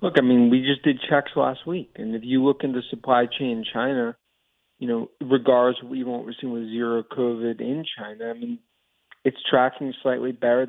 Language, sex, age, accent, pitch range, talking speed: English, male, 30-49, American, 120-140 Hz, 200 wpm